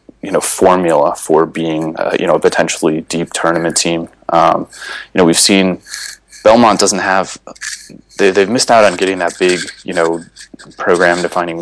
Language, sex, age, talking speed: English, male, 20-39, 165 wpm